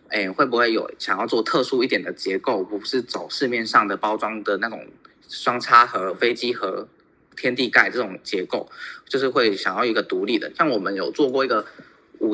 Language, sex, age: Chinese, male, 20-39